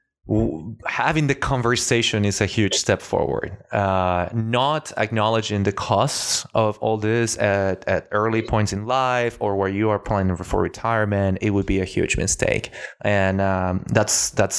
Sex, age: male, 20-39